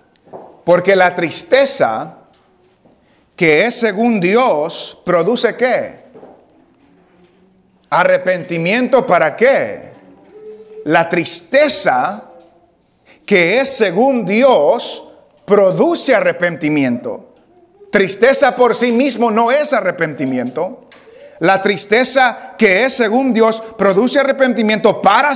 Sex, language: male, English